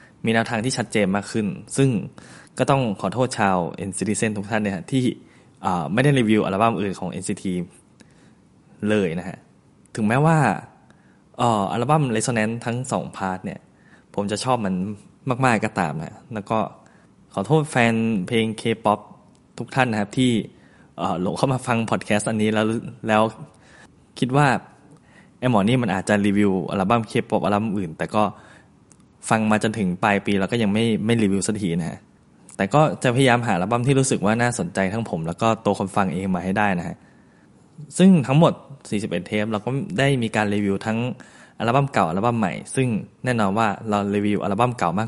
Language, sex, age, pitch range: Thai, male, 20-39, 100-125 Hz